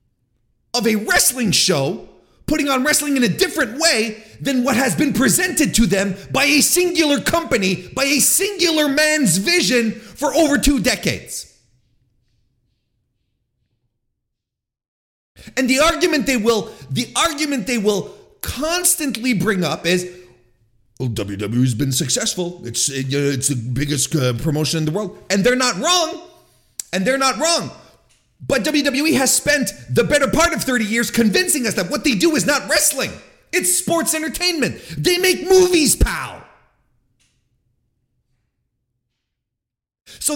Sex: male